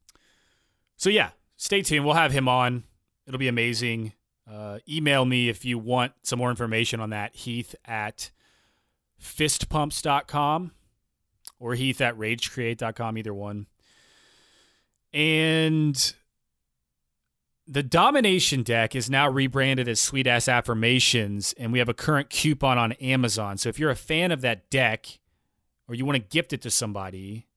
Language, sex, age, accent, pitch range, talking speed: English, male, 30-49, American, 105-130 Hz, 145 wpm